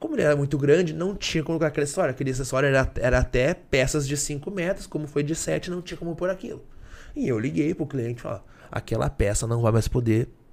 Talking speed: 235 wpm